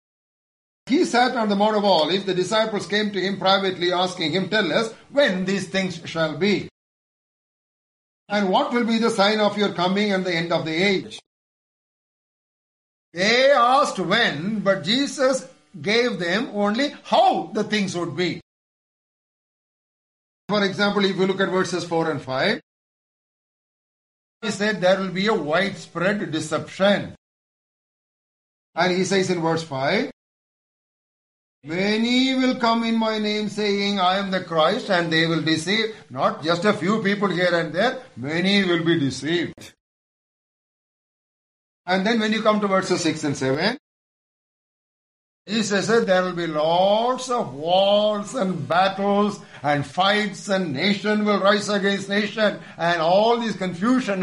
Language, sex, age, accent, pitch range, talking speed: English, male, 50-69, Indian, 175-215 Hz, 150 wpm